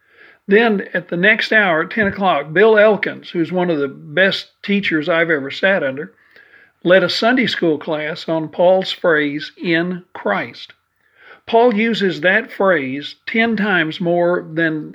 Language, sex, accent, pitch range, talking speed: English, male, American, 165-215 Hz, 155 wpm